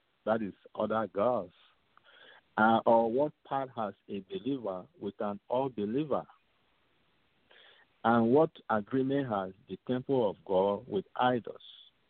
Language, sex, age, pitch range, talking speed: English, male, 50-69, 100-135 Hz, 120 wpm